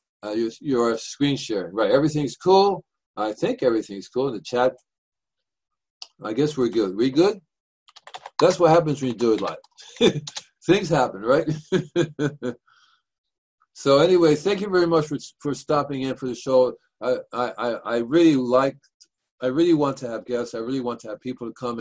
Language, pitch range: English, 125-160 Hz